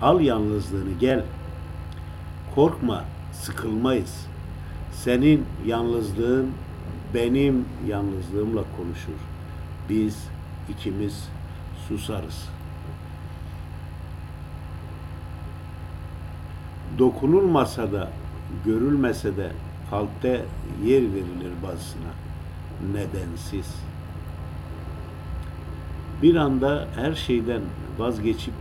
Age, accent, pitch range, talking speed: 50-69, native, 80-100 Hz, 55 wpm